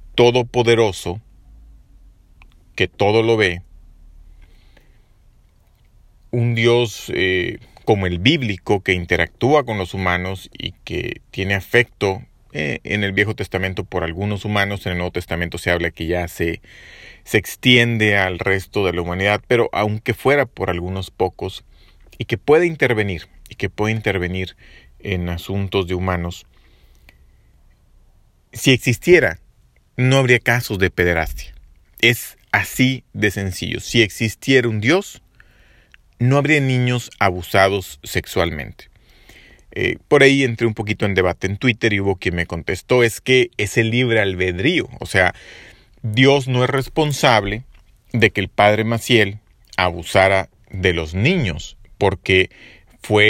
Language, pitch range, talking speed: Spanish, 90-120 Hz, 135 wpm